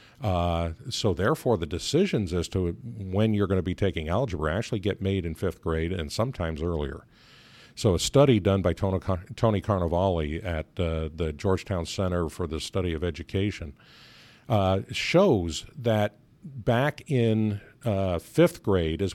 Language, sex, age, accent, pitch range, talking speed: English, male, 50-69, American, 90-120 Hz, 155 wpm